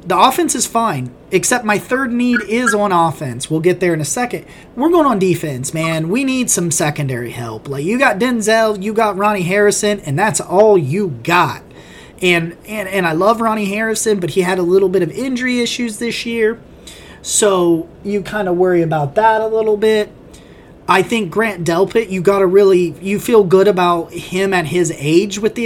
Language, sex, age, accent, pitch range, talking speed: English, male, 30-49, American, 175-225 Hz, 200 wpm